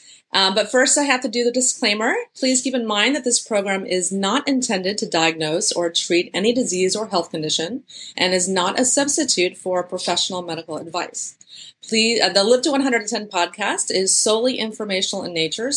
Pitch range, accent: 185-240 Hz, American